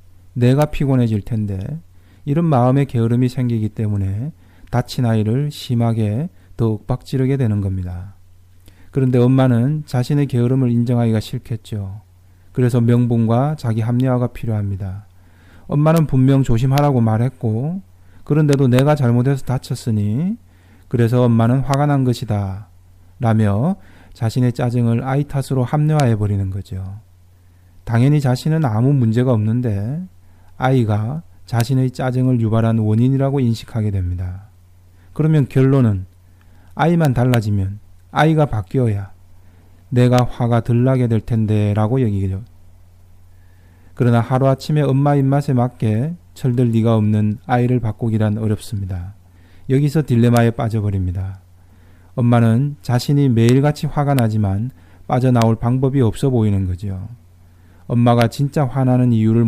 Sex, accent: male, native